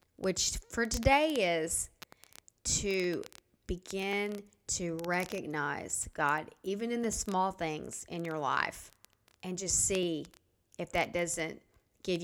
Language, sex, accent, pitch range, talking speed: English, female, American, 175-220 Hz, 120 wpm